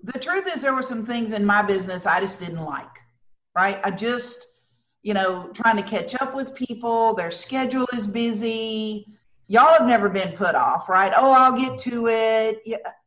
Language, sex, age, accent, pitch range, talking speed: English, female, 50-69, American, 200-255 Hz, 190 wpm